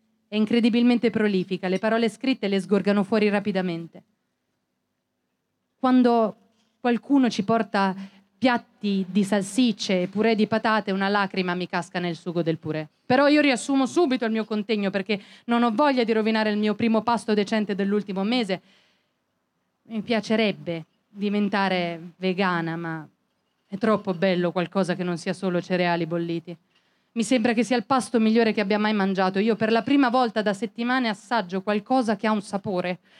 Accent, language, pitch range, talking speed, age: native, Italian, 200-245 Hz, 160 wpm, 30-49